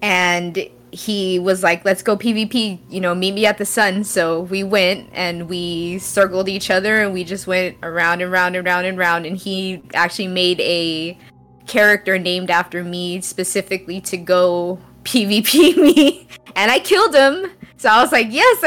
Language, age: English, 20-39